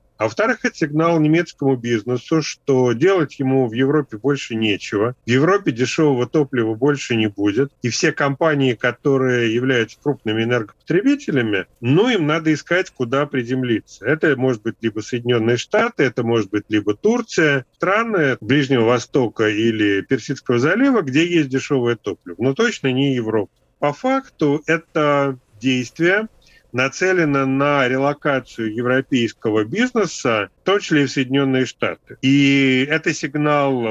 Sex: male